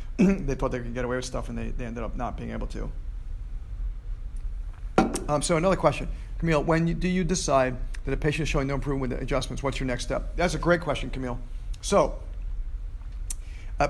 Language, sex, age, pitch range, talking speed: English, male, 50-69, 125-155 Hz, 200 wpm